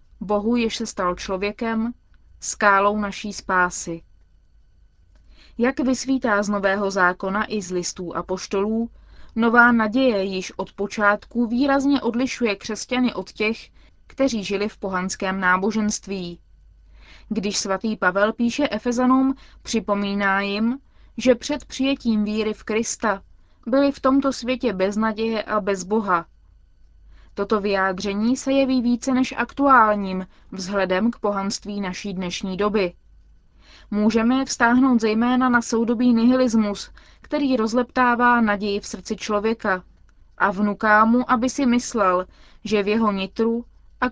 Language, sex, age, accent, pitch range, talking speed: Czech, female, 20-39, native, 190-240 Hz, 120 wpm